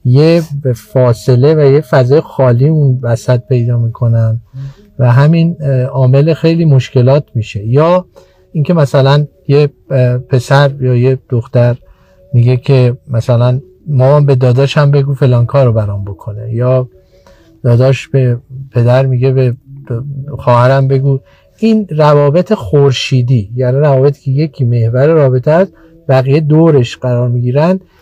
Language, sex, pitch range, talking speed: Persian, male, 125-150 Hz, 125 wpm